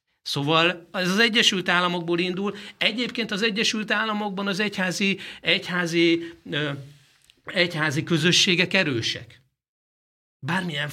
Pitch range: 125-180 Hz